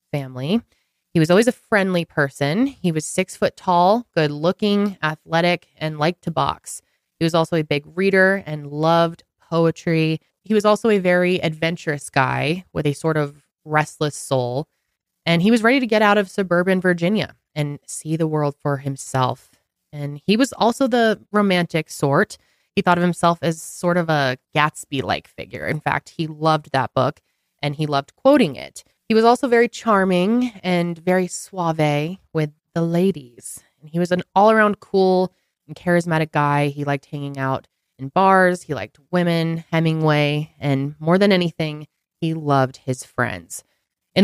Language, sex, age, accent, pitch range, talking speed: English, female, 20-39, American, 145-185 Hz, 170 wpm